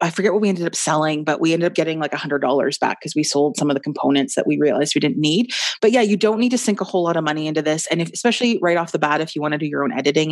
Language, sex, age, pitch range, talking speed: English, female, 30-49, 150-185 Hz, 325 wpm